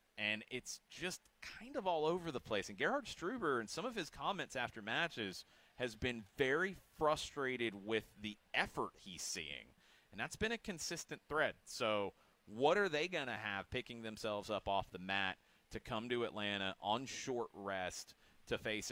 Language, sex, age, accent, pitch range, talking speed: English, male, 30-49, American, 100-140 Hz, 180 wpm